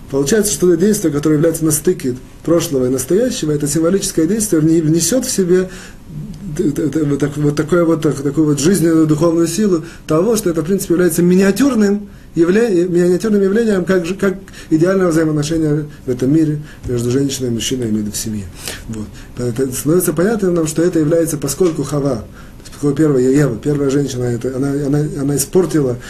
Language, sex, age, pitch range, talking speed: Russian, male, 30-49, 130-175 Hz, 155 wpm